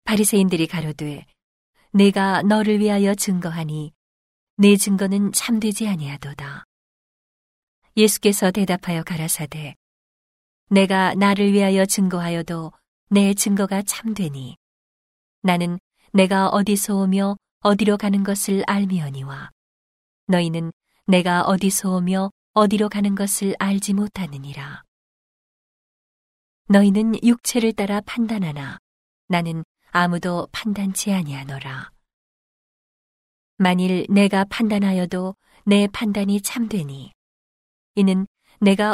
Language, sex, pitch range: Korean, female, 170-205 Hz